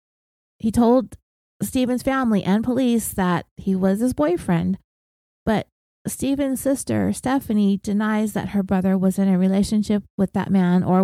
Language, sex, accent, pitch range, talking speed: English, female, American, 185-220 Hz, 145 wpm